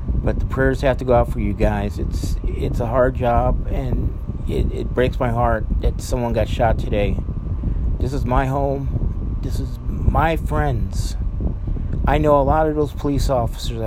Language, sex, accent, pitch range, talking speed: English, male, American, 90-140 Hz, 180 wpm